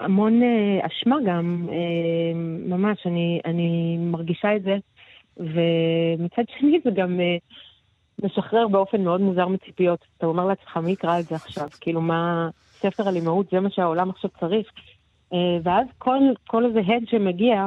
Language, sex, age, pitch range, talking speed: Hebrew, female, 30-49, 170-205 Hz, 155 wpm